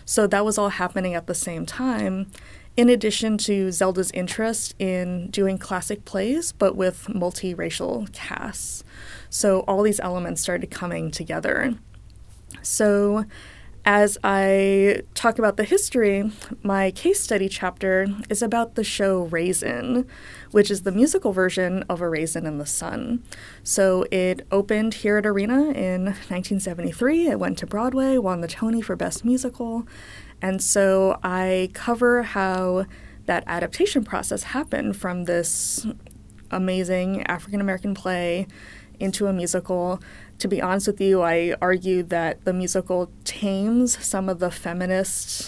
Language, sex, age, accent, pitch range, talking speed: English, female, 20-39, American, 180-220 Hz, 140 wpm